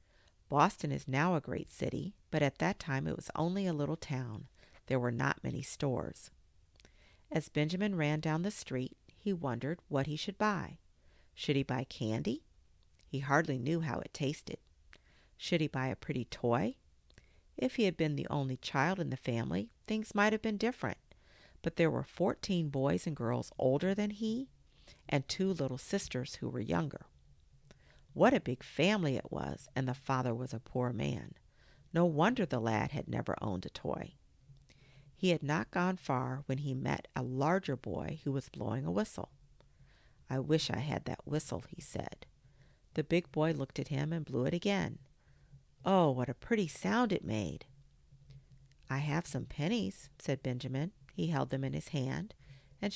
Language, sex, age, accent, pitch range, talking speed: English, female, 50-69, American, 125-165 Hz, 180 wpm